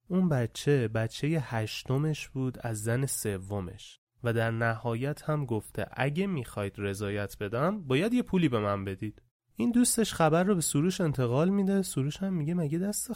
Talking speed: 165 wpm